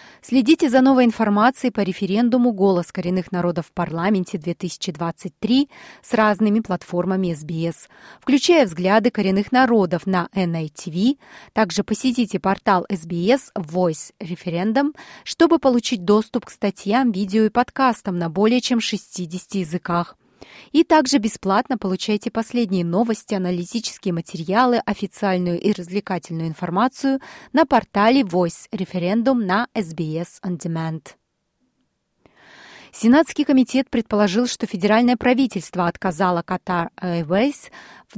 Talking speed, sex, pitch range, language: 110 wpm, female, 185-250 Hz, Russian